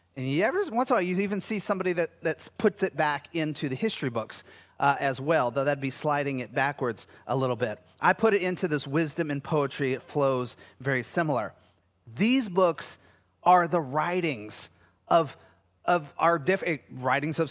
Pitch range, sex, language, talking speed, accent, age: 140-185 Hz, male, English, 190 wpm, American, 30-49